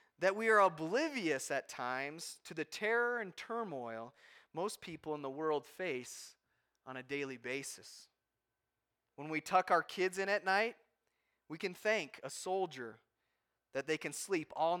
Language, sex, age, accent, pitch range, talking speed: English, male, 30-49, American, 140-220 Hz, 160 wpm